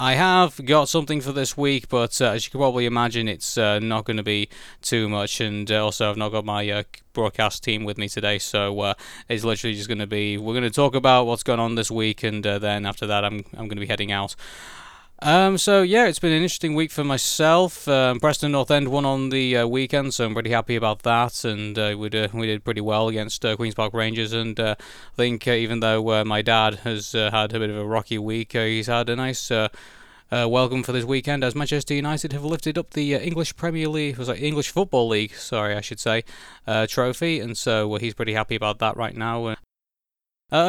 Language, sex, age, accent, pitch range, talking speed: English, male, 20-39, British, 110-145 Hz, 235 wpm